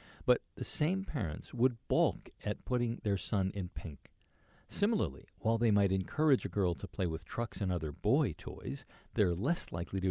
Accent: American